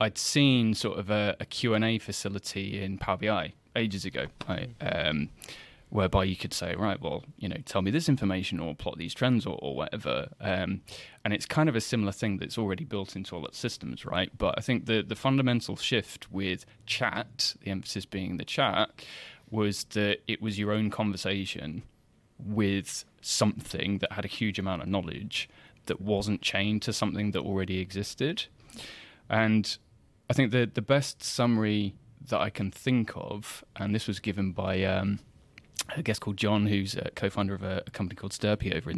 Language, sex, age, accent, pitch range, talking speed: English, male, 20-39, British, 95-110 Hz, 190 wpm